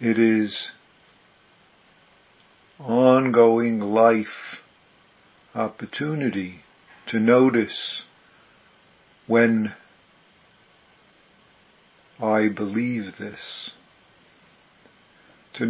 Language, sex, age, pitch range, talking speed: English, male, 50-69, 105-120 Hz, 45 wpm